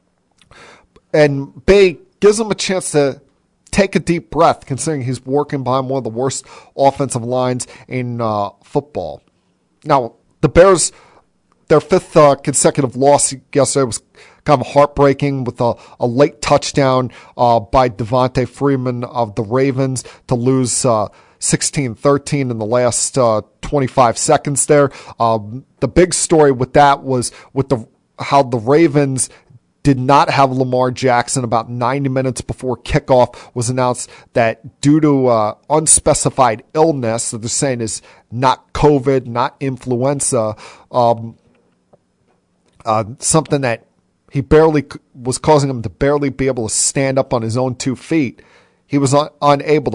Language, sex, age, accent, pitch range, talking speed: English, male, 40-59, American, 120-145 Hz, 150 wpm